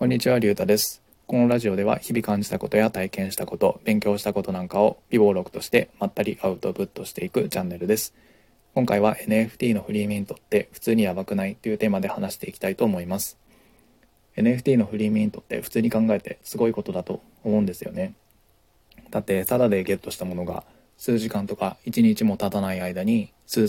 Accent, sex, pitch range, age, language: native, male, 100-115 Hz, 20-39, Japanese